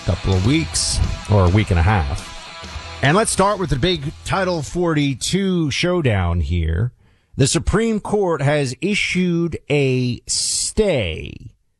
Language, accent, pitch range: English, American, 105-155 Hz